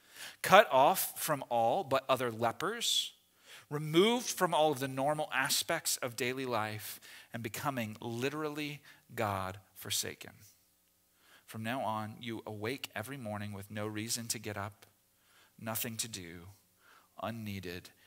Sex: male